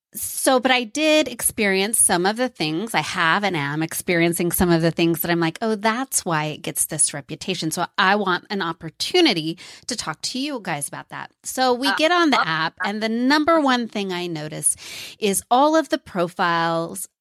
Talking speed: 200 wpm